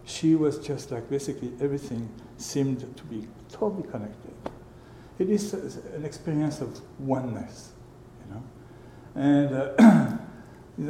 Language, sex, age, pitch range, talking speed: English, male, 60-79, 120-145 Hz, 120 wpm